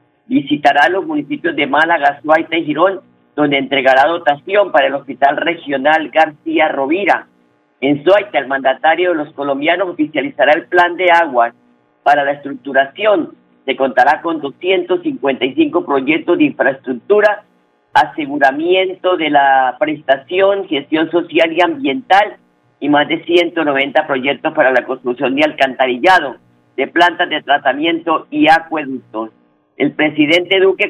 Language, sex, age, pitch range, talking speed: Spanish, female, 50-69, 140-180 Hz, 130 wpm